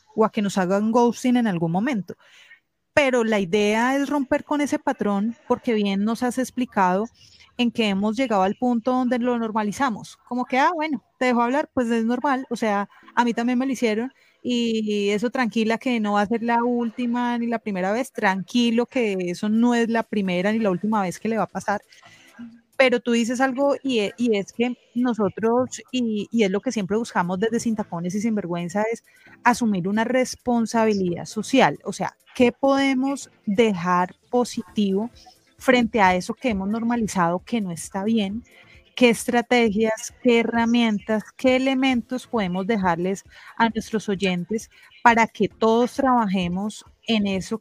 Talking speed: 170 wpm